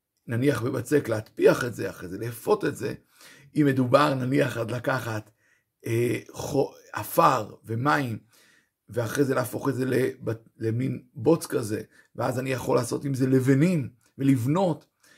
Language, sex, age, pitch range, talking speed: Hebrew, male, 50-69, 120-155 Hz, 140 wpm